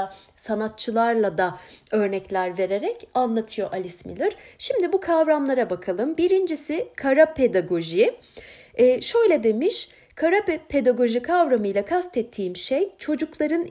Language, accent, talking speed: Turkish, native, 95 wpm